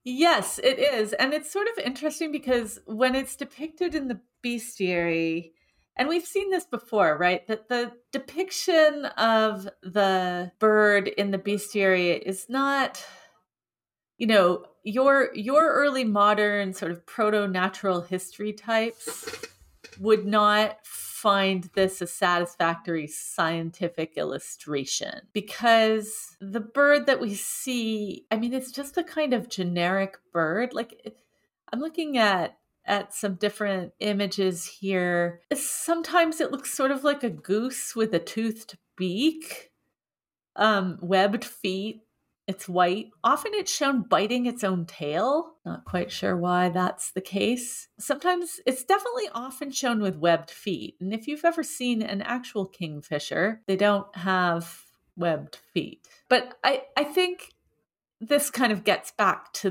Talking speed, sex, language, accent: 140 wpm, female, English, American